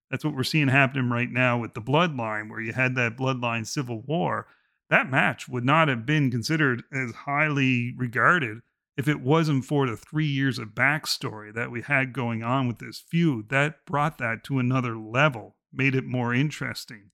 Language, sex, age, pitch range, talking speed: English, male, 40-59, 125-160 Hz, 190 wpm